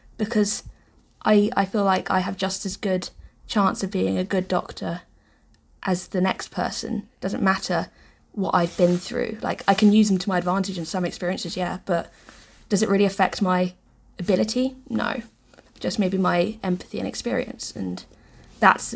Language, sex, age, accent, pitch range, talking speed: English, female, 20-39, British, 180-210 Hz, 175 wpm